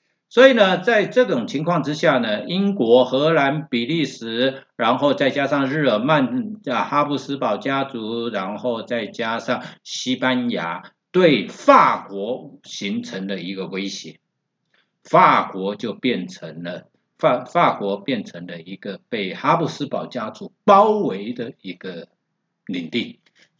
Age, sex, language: 60-79, male, Chinese